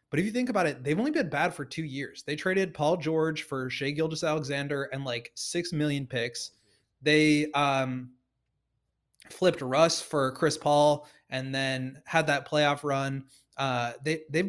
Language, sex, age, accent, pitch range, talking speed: English, male, 20-39, American, 125-155 Hz, 170 wpm